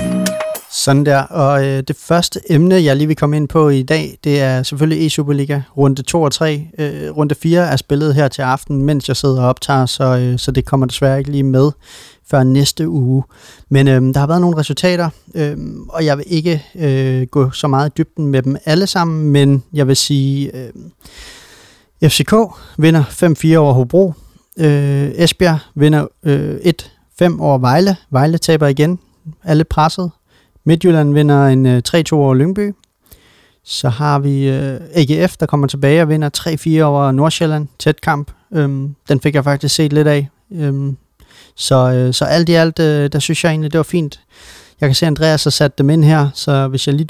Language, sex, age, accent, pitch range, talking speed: Danish, male, 30-49, native, 135-160 Hz, 190 wpm